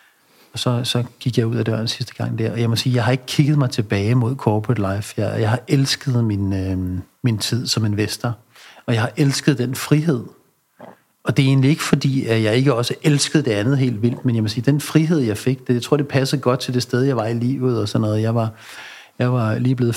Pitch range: 110-135 Hz